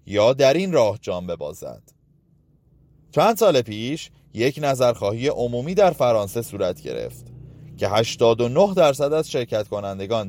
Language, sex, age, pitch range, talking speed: Persian, male, 30-49, 100-145 Hz, 130 wpm